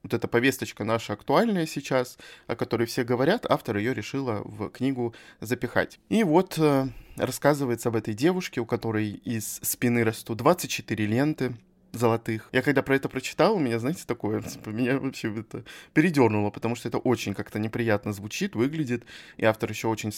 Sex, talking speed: male, 165 wpm